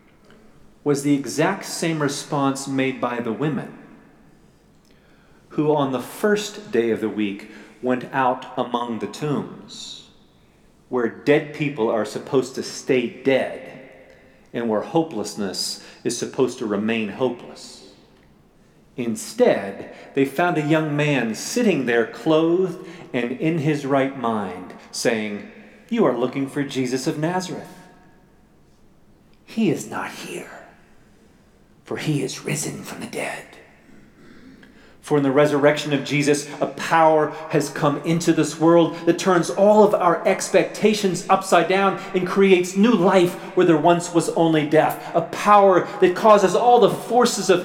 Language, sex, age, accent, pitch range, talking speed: English, male, 40-59, American, 135-185 Hz, 140 wpm